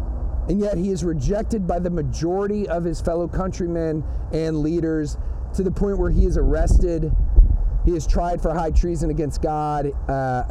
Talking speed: 170 wpm